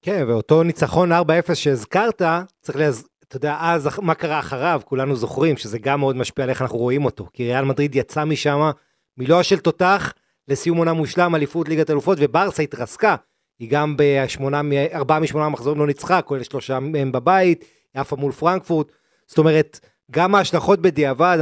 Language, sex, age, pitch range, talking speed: Hebrew, male, 30-49, 135-165 Hz, 165 wpm